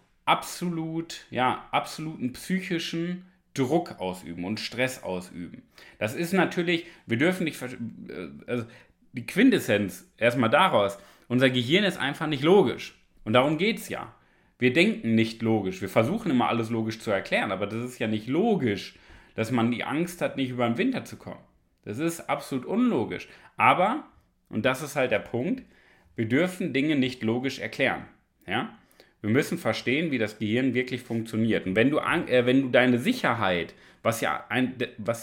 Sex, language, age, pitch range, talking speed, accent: male, German, 30-49, 115-155 Hz, 155 wpm, German